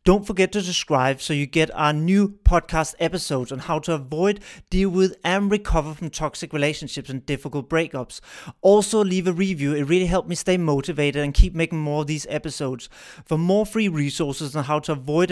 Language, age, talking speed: English, 30-49, 195 wpm